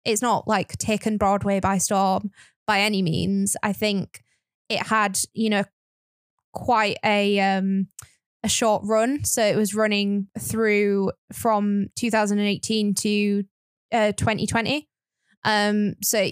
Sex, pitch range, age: female, 200-230 Hz, 10-29